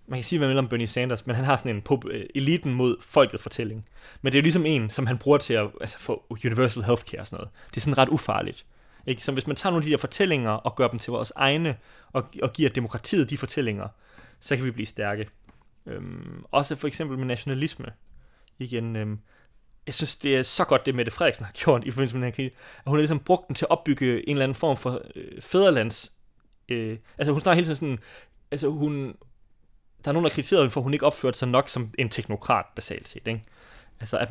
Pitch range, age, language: 115-145 Hz, 20-39, Danish